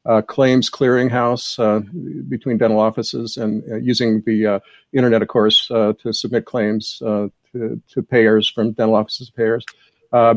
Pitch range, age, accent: 110-125 Hz, 50-69, American